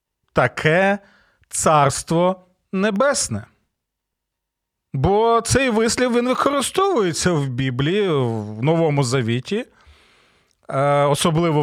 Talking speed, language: 70 wpm, Ukrainian